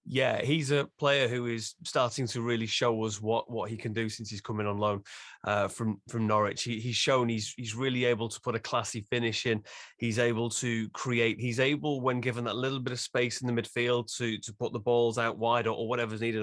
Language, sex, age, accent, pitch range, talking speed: English, male, 30-49, British, 120-155 Hz, 240 wpm